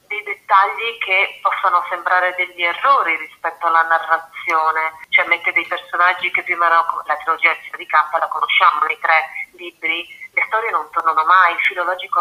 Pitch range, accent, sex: 165-200 Hz, native, female